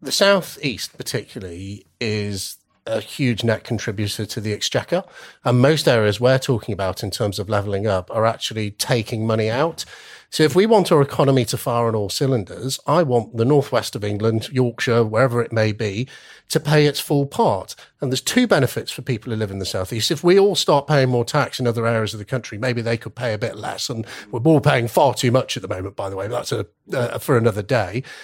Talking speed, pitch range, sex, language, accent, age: 225 wpm, 115-165 Hz, male, English, British, 40-59